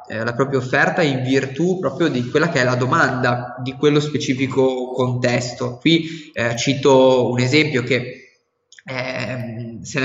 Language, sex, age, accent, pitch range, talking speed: Italian, male, 20-39, native, 120-140 Hz, 150 wpm